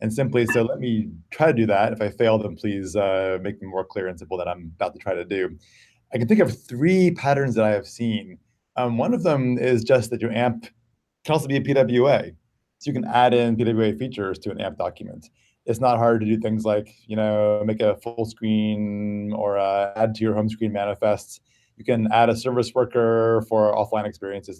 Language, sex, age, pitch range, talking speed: English, male, 30-49, 110-120 Hz, 225 wpm